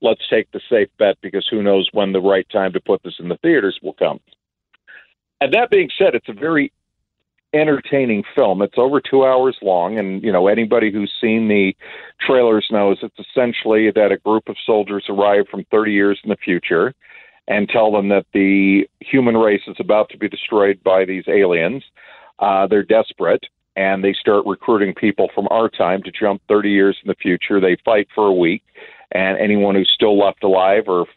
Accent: American